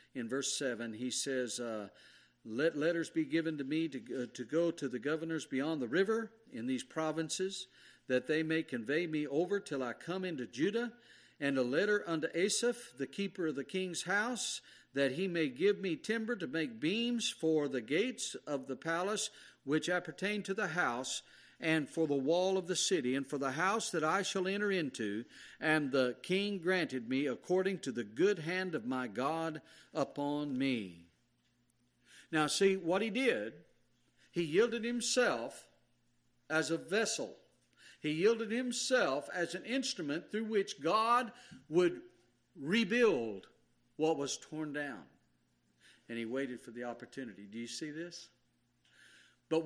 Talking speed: 165 wpm